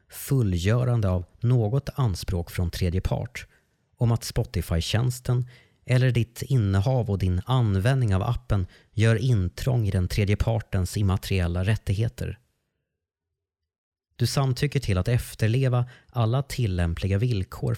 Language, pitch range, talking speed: Swedish, 90-120 Hz, 110 wpm